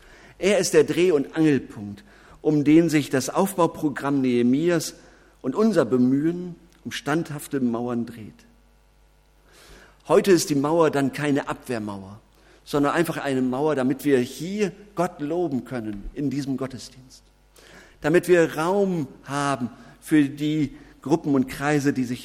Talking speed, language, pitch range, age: 135 wpm, German, 125-165 Hz, 50-69